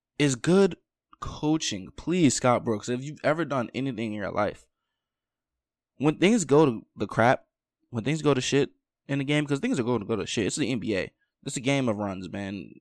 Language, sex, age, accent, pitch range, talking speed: English, male, 20-39, American, 110-150 Hz, 210 wpm